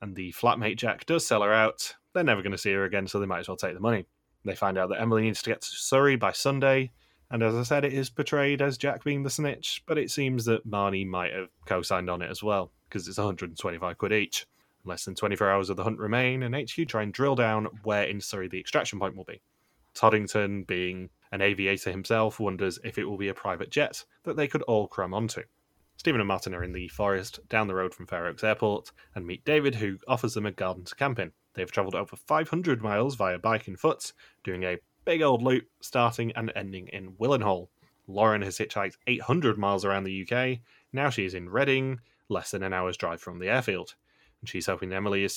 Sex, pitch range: male, 95-120 Hz